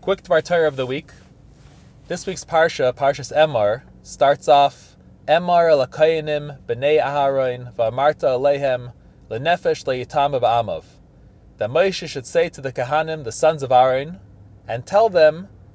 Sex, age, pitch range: male, 30-49, 125-170 Hz